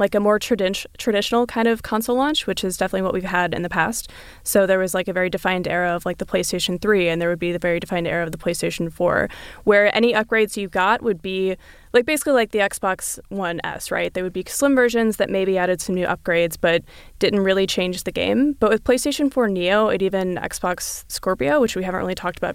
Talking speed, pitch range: 235 wpm, 185-220 Hz